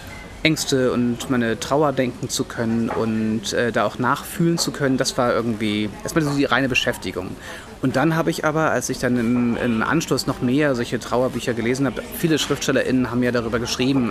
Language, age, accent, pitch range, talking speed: German, 30-49, German, 120-140 Hz, 190 wpm